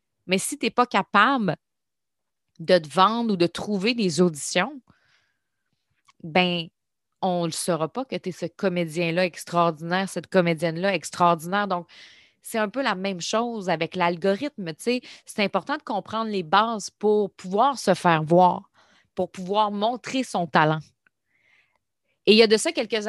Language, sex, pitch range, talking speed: French, female, 180-245 Hz, 160 wpm